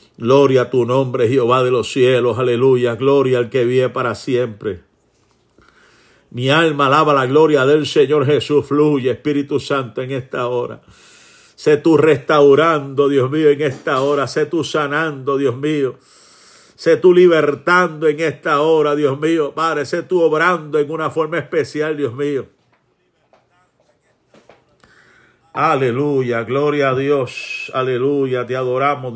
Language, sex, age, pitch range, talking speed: Spanish, male, 50-69, 135-160 Hz, 140 wpm